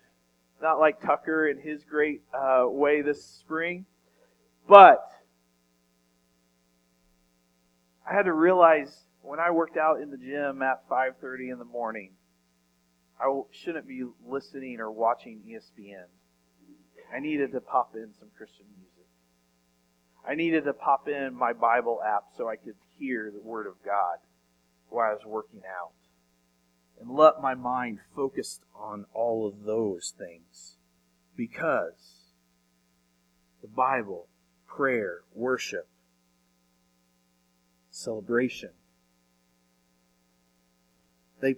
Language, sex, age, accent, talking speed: English, male, 40-59, American, 115 wpm